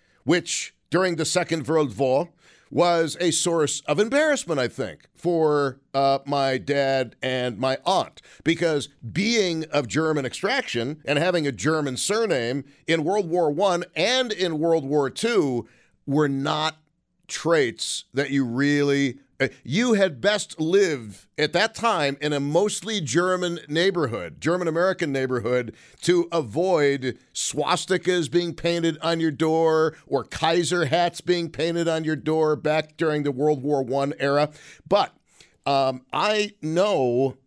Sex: male